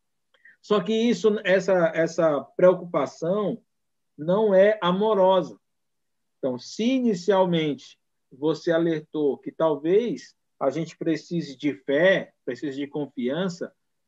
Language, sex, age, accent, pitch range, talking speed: Portuguese, male, 50-69, Brazilian, 150-180 Hz, 100 wpm